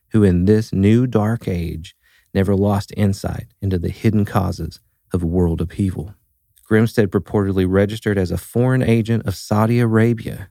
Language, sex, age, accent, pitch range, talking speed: English, male, 40-59, American, 95-110 Hz, 150 wpm